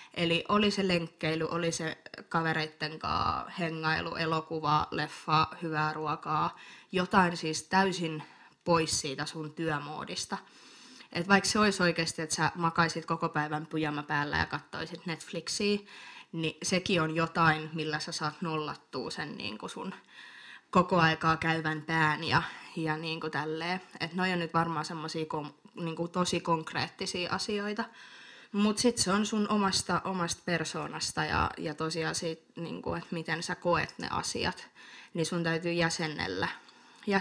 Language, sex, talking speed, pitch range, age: Finnish, female, 140 wpm, 155-180 Hz, 20-39